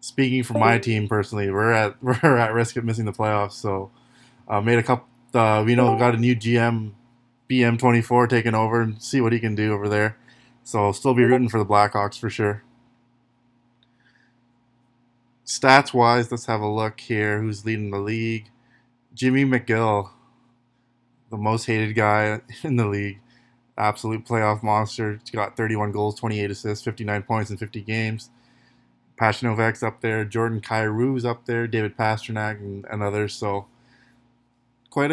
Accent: American